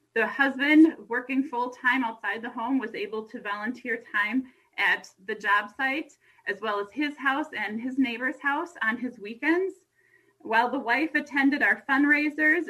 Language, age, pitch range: English, 30-49, 215-285 Hz